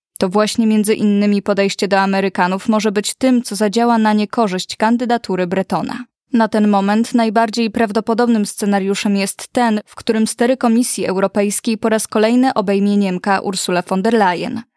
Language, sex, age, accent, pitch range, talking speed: Polish, female, 20-39, native, 200-225 Hz, 155 wpm